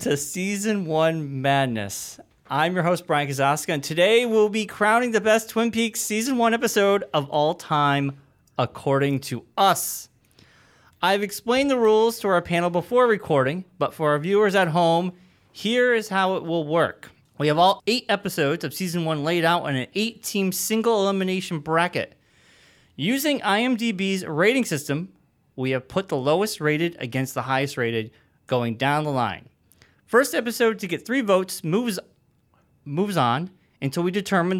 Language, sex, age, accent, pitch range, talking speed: English, male, 30-49, American, 140-215 Hz, 165 wpm